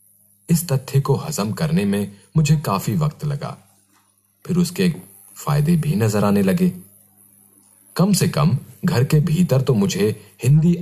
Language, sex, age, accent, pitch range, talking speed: Hindi, male, 40-59, native, 115-170 Hz, 145 wpm